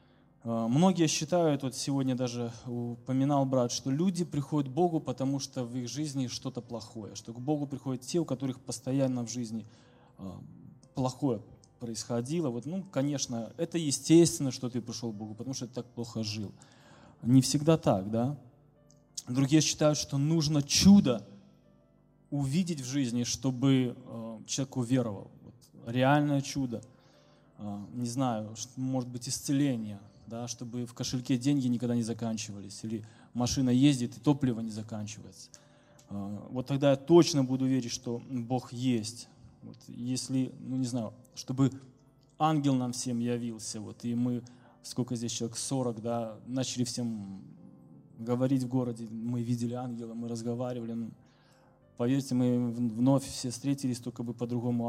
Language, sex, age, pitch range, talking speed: Russian, male, 20-39, 120-135 Hz, 140 wpm